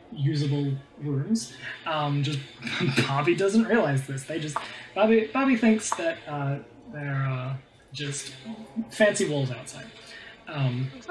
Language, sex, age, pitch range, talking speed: English, male, 20-39, 135-180 Hz, 125 wpm